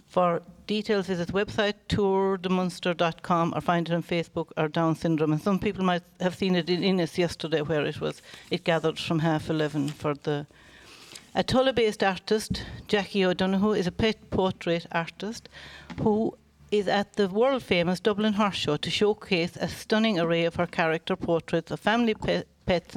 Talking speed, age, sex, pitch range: 170 wpm, 60-79, female, 170-205 Hz